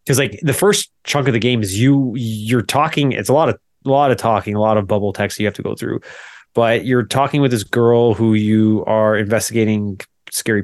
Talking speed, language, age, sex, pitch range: 235 wpm, English, 20-39, male, 110-140 Hz